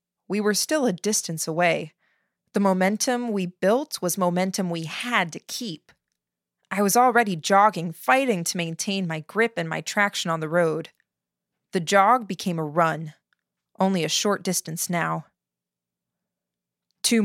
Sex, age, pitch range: female, 20-39, 170-205 Hz